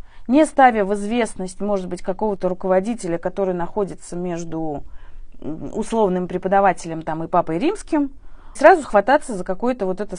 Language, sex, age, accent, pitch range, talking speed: Russian, female, 30-49, native, 180-240 Hz, 135 wpm